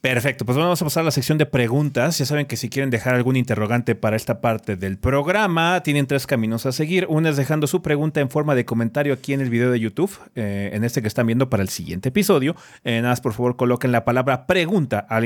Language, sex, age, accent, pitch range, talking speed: Spanish, male, 30-49, Mexican, 115-155 Hz, 250 wpm